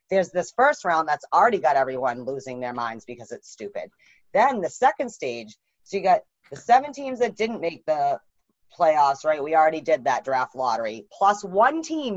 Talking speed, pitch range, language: 190 wpm, 155-245 Hz, English